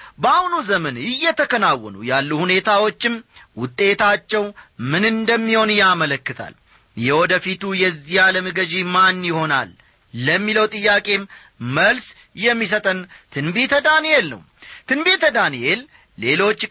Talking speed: 90 wpm